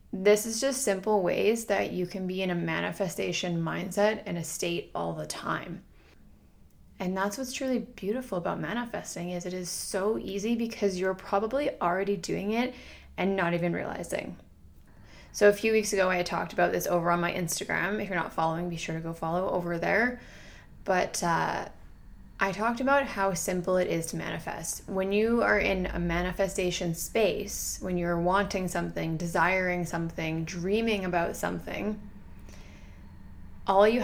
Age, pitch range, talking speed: 20-39, 170-205 Hz, 165 wpm